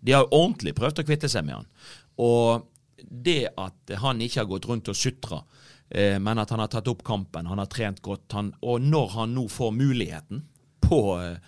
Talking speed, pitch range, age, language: 200 wpm, 110-150 Hz, 40-59, English